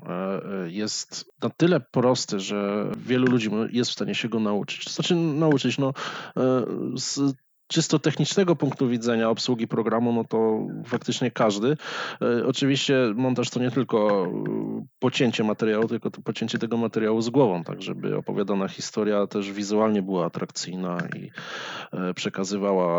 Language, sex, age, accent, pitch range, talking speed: Polish, male, 20-39, native, 105-130 Hz, 135 wpm